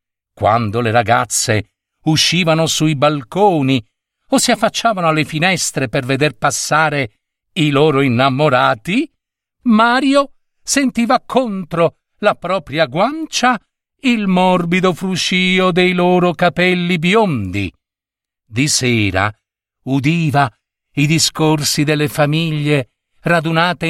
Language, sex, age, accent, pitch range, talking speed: Italian, male, 50-69, native, 115-175 Hz, 95 wpm